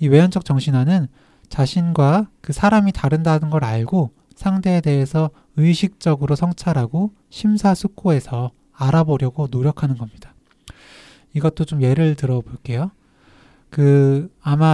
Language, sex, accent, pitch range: Korean, male, native, 135-175 Hz